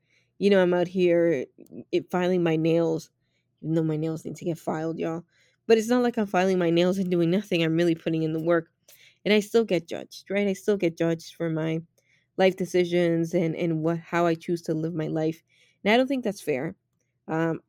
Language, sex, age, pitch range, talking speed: English, female, 20-39, 160-180 Hz, 225 wpm